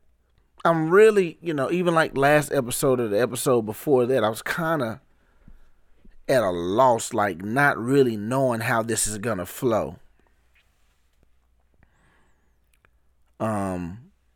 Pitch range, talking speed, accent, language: 75-125 Hz, 130 wpm, American, English